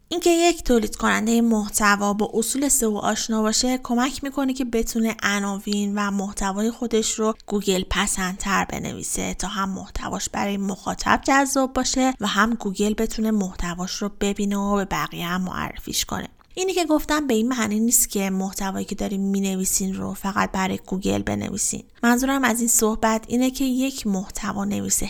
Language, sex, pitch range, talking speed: Persian, female, 195-230 Hz, 165 wpm